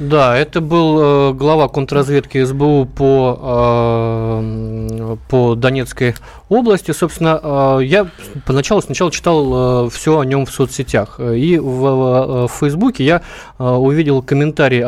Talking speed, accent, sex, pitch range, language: 135 wpm, native, male, 120-150 Hz, Russian